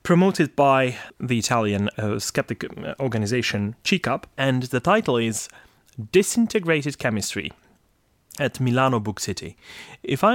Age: 30-49